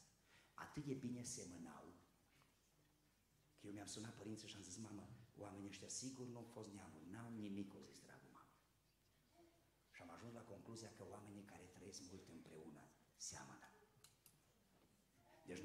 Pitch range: 100-140 Hz